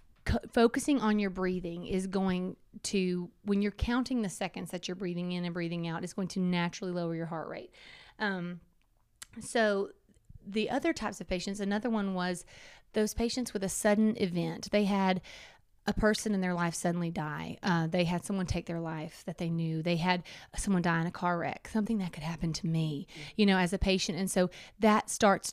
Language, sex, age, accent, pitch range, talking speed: English, female, 30-49, American, 175-200 Hz, 200 wpm